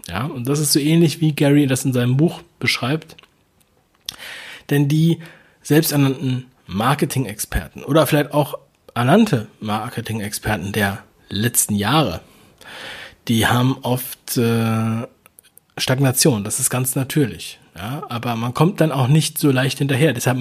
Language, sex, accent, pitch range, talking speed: German, male, German, 115-150 Hz, 130 wpm